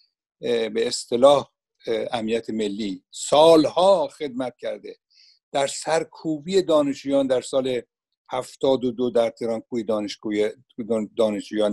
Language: Persian